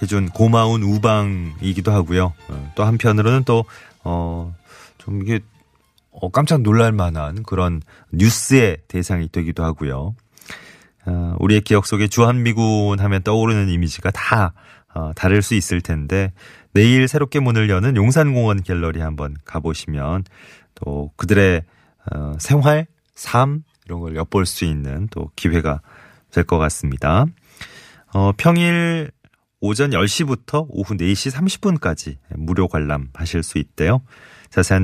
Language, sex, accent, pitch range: Korean, male, native, 85-120 Hz